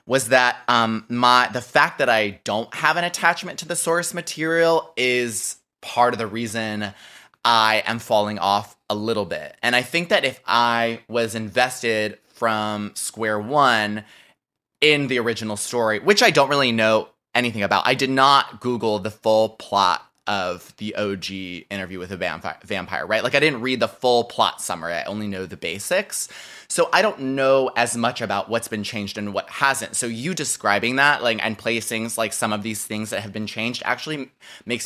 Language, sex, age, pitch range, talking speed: English, male, 20-39, 105-135 Hz, 190 wpm